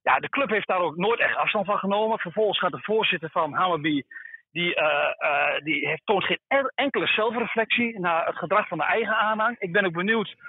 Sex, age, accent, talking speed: male, 40-59, Dutch, 210 wpm